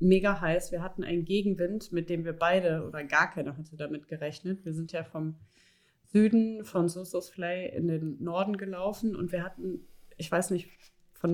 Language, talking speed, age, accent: German, 180 wpm, 30-49, German